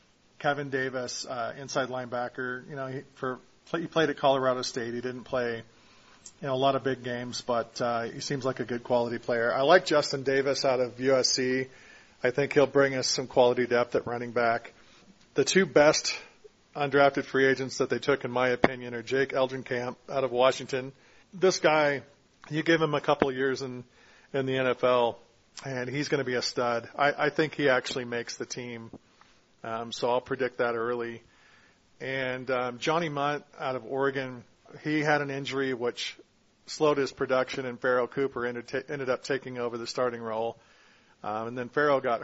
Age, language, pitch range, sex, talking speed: 40-59, English, 120-140 Hz, male, 190 wpm